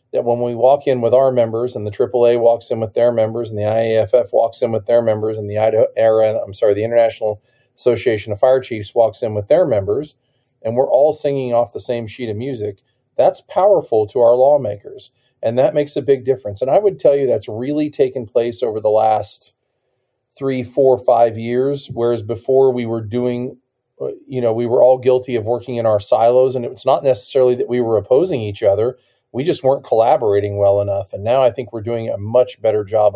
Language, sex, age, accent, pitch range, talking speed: English, male, 40-59, American, 110-130 Hz, 210 wpm